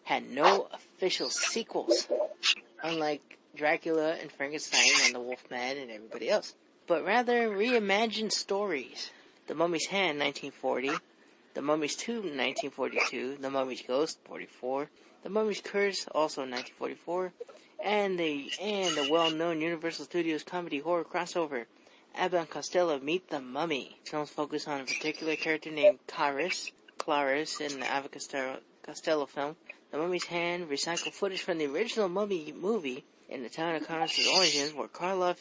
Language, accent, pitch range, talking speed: English, American, 150-195 Hz, 135 wpm